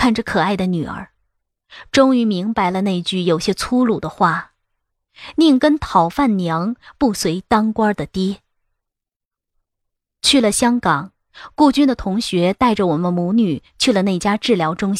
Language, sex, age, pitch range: Chinese, female, 20-39, 170-235 Hz